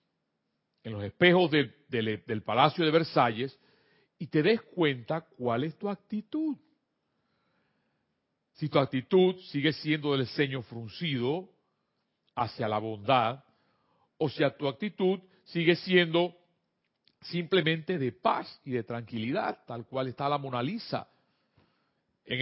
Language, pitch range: Spanish, 130-190 Hz